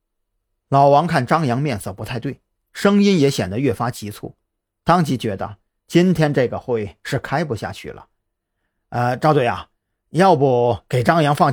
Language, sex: Chinese, male